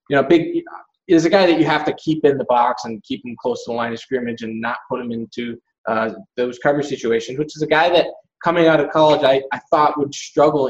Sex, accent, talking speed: male, American, 260 wpm